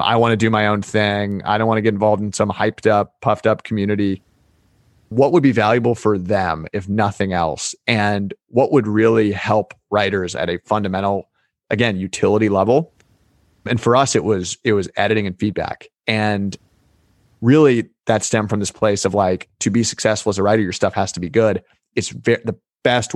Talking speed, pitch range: 195 wpm, 100-115 Hz